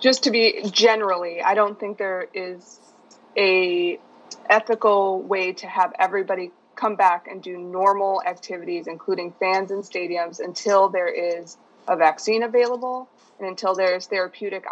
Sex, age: female, 20-39